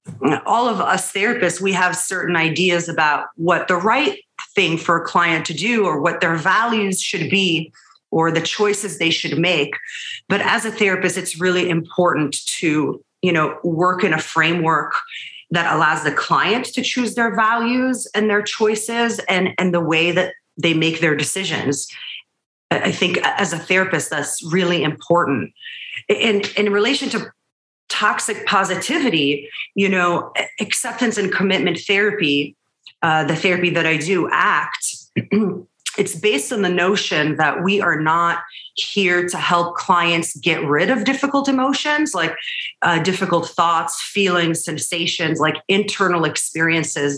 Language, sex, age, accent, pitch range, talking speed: English, female, 30-49, American, 165-210 Hz, 150 wpm